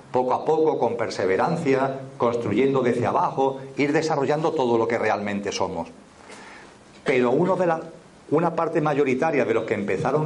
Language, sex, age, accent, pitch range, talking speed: Spanish, male, 40-59, Spanish, 125-160 Hz, 135 wpm